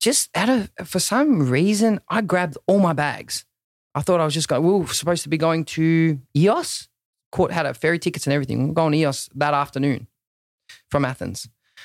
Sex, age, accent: male, 20-39, Australian